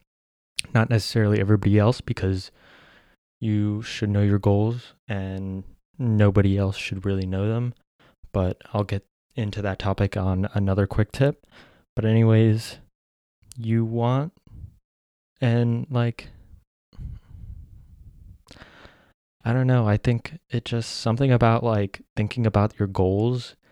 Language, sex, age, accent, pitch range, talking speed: English, male, 20-39, American, 95-115 Hz, 120 wpm